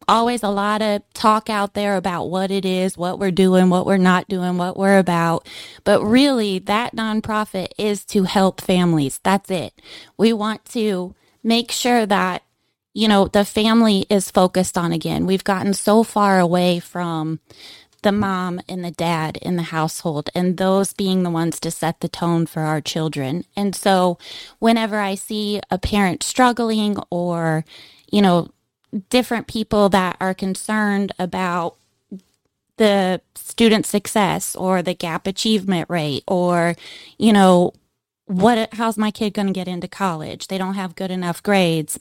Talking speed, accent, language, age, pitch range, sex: 165 wpm, American, English, 20-39, 180-215 Hz, female